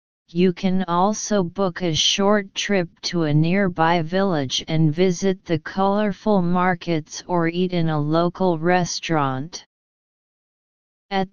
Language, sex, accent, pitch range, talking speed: English, female, American, 160-195 Hz, 120 wpm